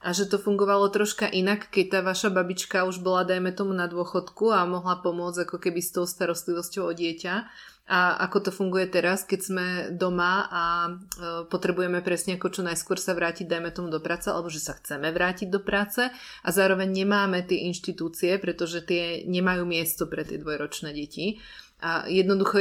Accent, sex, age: native, female, 30-49